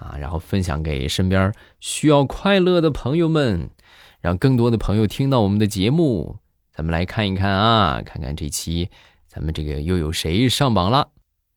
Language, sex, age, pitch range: Chinese, male, 20-39, 85-120 Hz